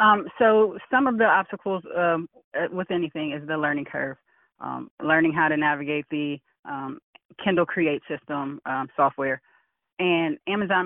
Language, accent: English, American